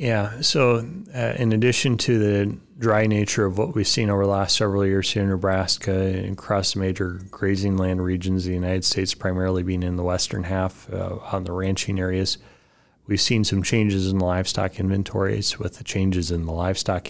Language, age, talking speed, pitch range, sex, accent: English, 30-49, 195 wpm, 95-105 Hz, male, American